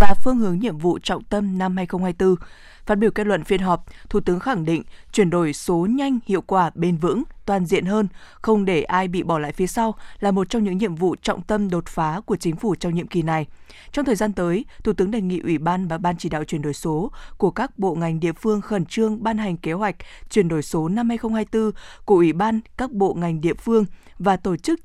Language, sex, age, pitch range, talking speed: Vietnamese, female, 20-39, 175-215 Hz, 240 wpm